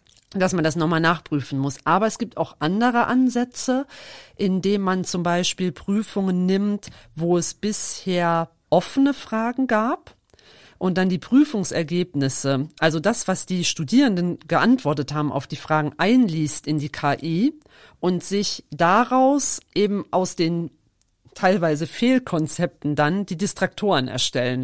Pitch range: 155-195 Hz